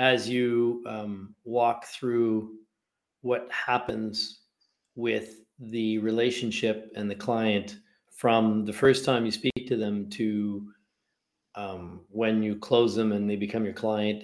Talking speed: 135 wpm